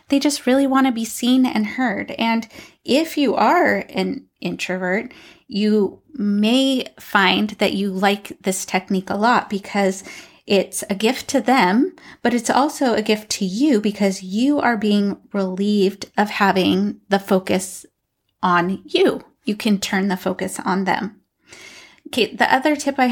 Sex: female